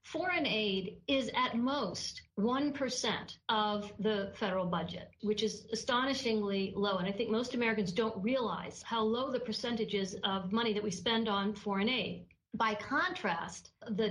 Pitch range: 205-245 Hz